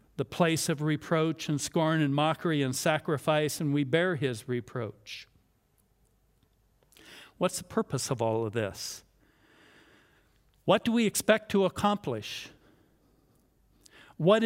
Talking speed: 120 wpm